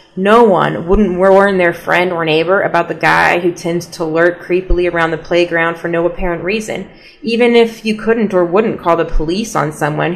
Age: 30-49